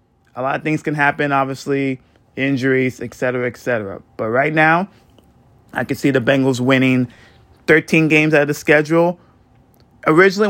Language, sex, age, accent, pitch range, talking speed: English, male, 20-39, American, 125-160 Hz, 160 wpm